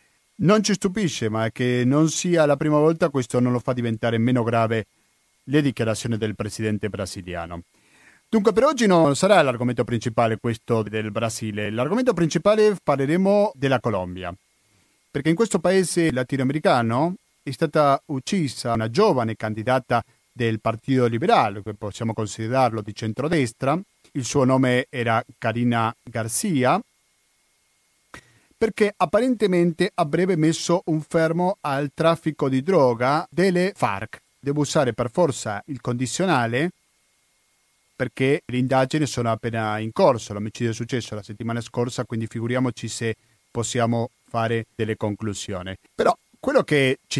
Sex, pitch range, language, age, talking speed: male, 115-155 Hz, Italian, 40-59, 130 wpm